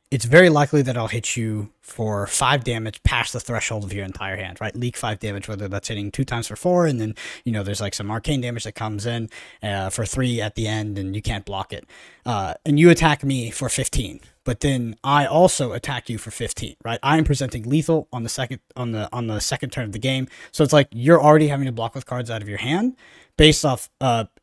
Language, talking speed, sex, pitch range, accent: English, 245 wpm, male, 110-140 Hz, American